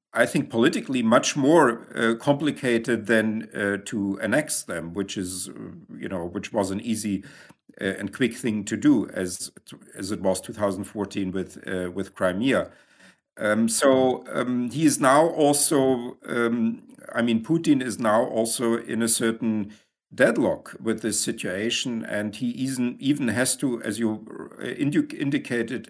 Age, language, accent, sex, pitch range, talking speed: 50-69, English, German, male, 100-120 Hz, 150 wpm